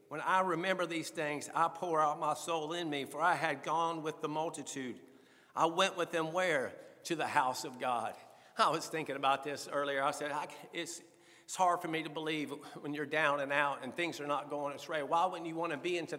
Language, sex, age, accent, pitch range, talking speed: English, male, 50-69, American, 160-185 Hz, 225 wpm